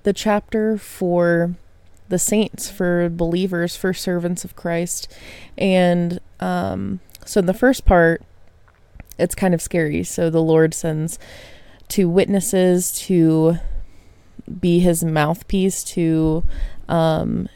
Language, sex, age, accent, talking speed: English, female, 20-39, American, 115 wpm